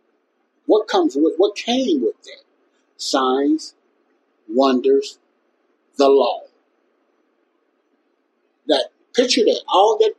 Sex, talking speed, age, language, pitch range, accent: male, 95 wpm, 50-69, English, 285-410 Hz, American